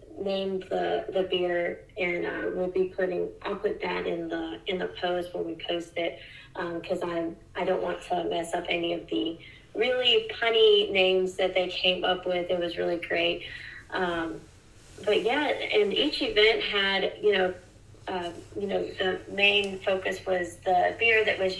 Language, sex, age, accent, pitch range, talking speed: English, female, 30-49, American, 175-205 Hz, 185 wpm